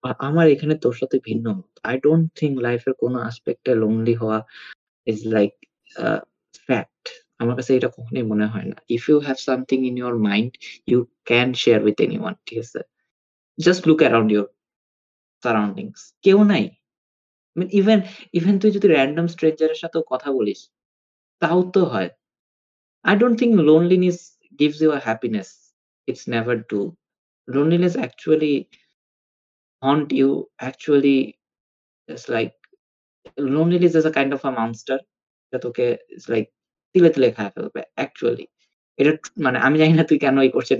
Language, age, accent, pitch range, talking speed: Bengali, 20-39, native, 120-180 Hz, 60 wpm